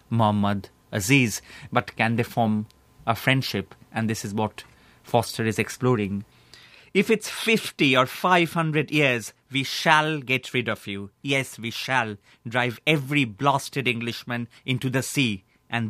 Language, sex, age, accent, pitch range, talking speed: English, male, 30-49, Indian, 110-135 Hz, 145 wpm